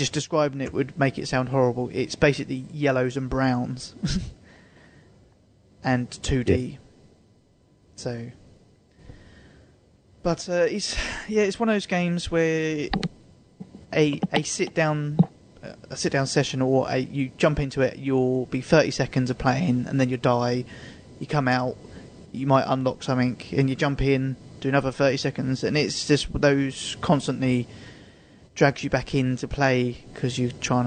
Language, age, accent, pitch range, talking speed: English, 20-39, British, 125-150 Hz, 155 wpm